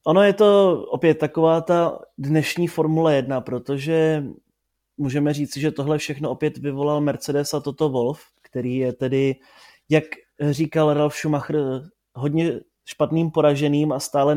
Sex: male